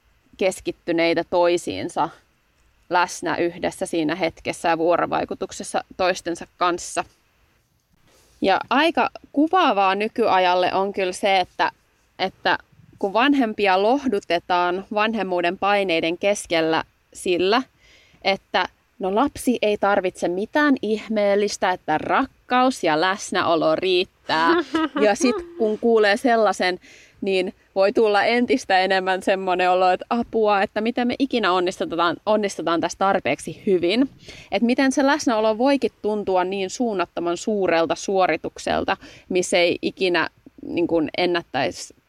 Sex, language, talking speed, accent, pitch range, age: female, Finnish, 105 wpm, native, 175-230 Hz, 20-39